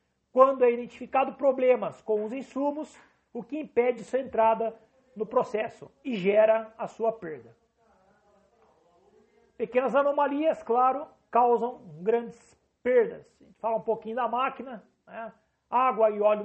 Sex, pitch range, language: male, 215-245 Hz, Portuguese